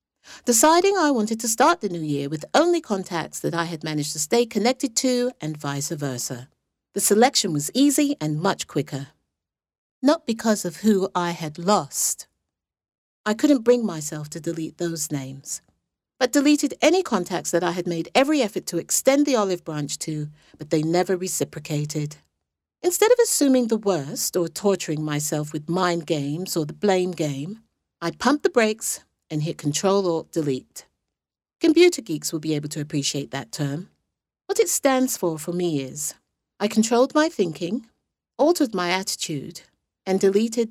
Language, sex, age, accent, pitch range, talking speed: English, female, 50-69, British, 155-255 Hz, 165 wpm